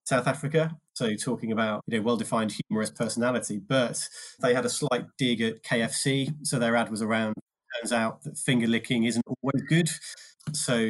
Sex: male